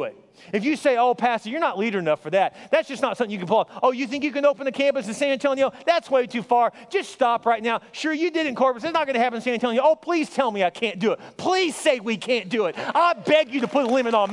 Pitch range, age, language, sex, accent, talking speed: 230-300 Hz, 30-49, English, male, American, 305 wpm